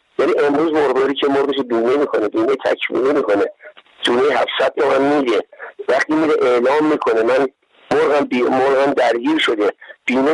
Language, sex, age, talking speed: Persian, male, 50-69, 140 wpm